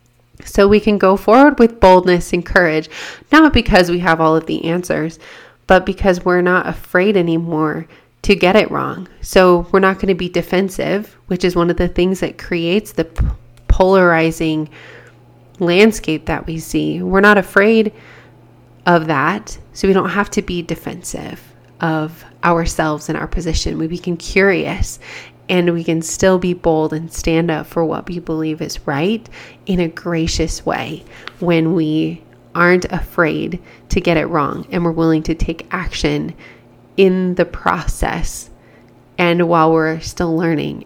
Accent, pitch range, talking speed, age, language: American, 160-190 Hz, 160 wpm, 30-49, English